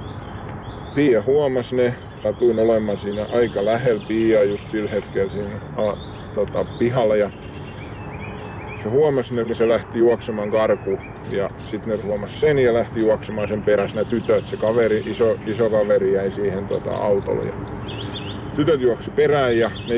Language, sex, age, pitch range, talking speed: Finnish, male, 20-39, 105-120 Hz, 155 wpm